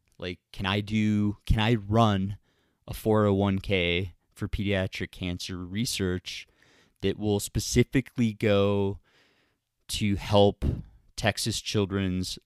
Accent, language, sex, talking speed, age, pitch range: American, English, male, 100 wpm, 20-39, 95-110 Hz